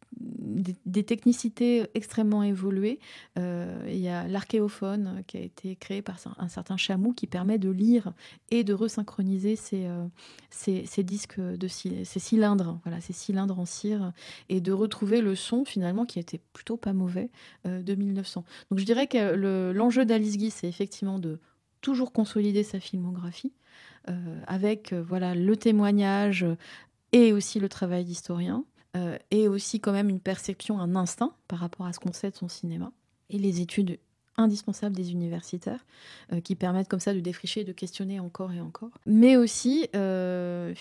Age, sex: 30-49, female